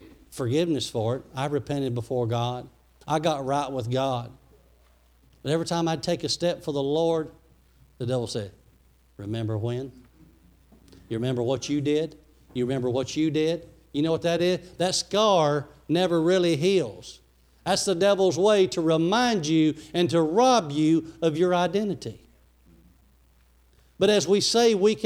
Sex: male